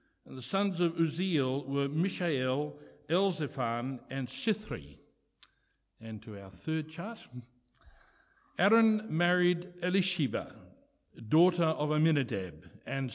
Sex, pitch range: male, 125-160 Hz